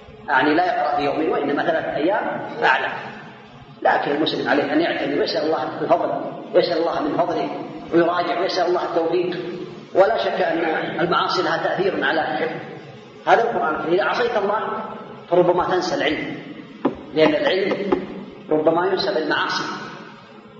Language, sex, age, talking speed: Arabic, female, 40-59, 130 wpm